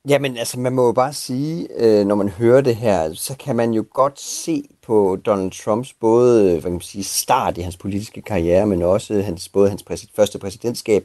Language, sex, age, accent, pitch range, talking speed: Danish, male, 30-49, native, 95-125 Hz, 205 wpm